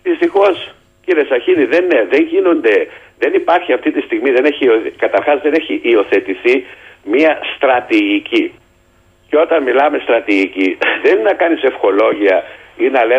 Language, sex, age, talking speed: Greek, male, 60-79, 125 wpm